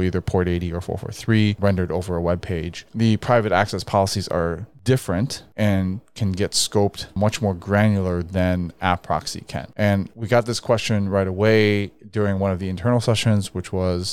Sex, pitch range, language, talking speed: male, 90-110 Hz, English, 180 wpm